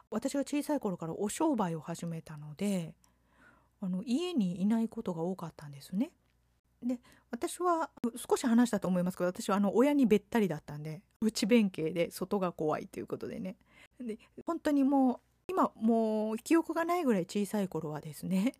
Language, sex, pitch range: Japanese, female, 175-240 Hz